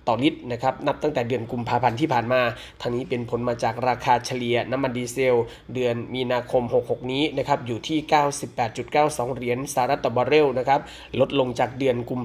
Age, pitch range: 20-39, 120-140 Hz